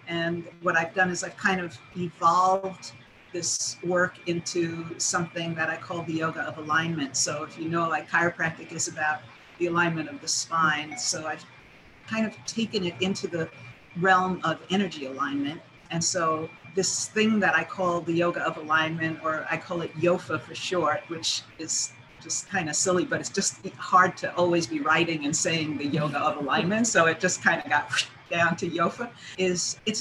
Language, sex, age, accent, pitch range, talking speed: English, female, 50-69, American, 160-190 Hz, 190 wpm